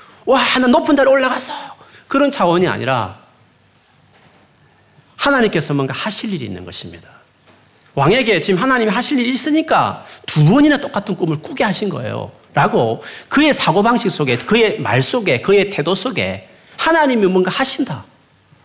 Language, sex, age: Korean, male, 40-59